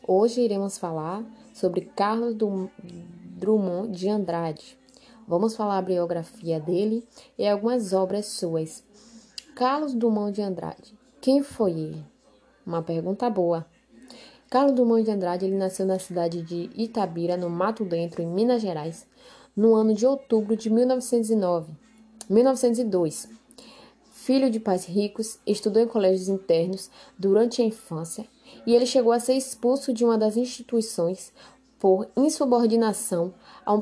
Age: 20-39